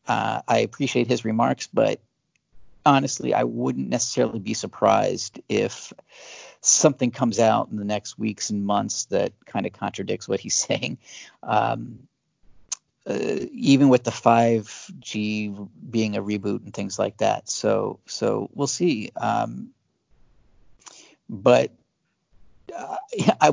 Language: English